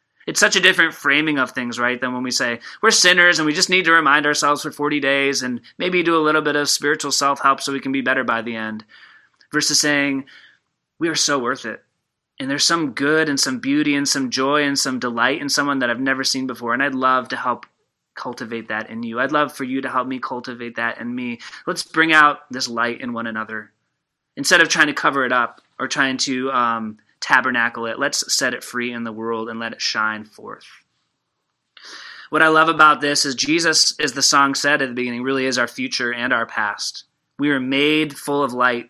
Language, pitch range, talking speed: English, 125-150 Hz, 225 wpm